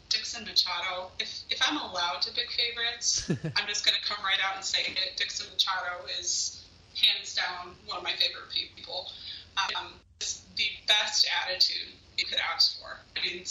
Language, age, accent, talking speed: English, 20-39, American, 175 wpm